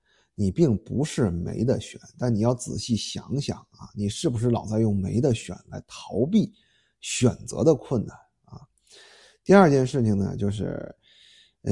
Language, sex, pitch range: Chinese, male, 110-165 Hz